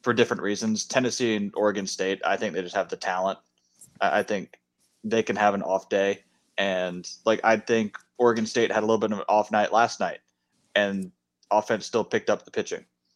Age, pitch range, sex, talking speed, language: 20-39, 90-110 Hz, male, 205 wpm, English